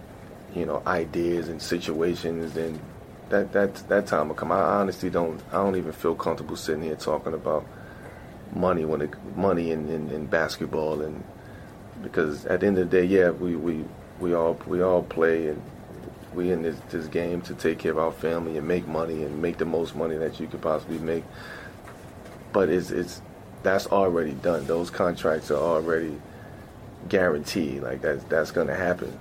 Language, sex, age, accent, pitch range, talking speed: English, male, 30-49, American, 80-90 Hz, 185 wpm